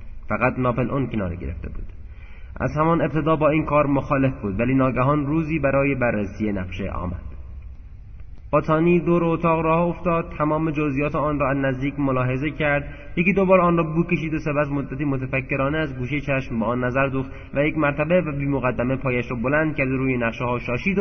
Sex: male